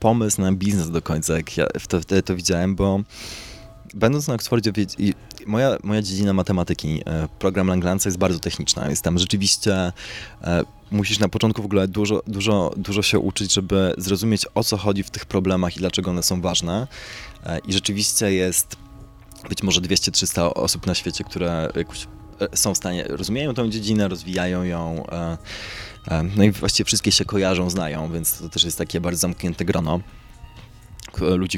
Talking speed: 160 wpm